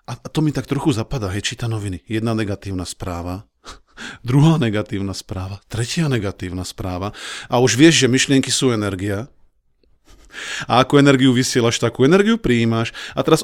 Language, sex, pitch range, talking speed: Slovak, male, 110-150 Hz, 150 wpm